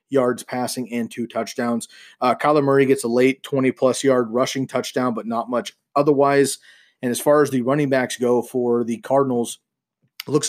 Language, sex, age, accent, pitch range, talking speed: English, male, 30-49, American, 120-140 Hz, 190 wpm